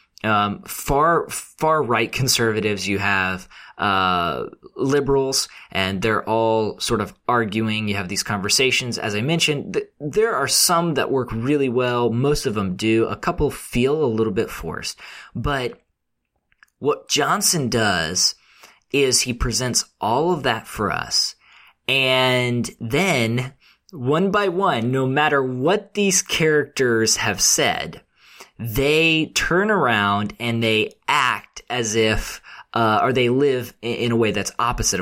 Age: 20-39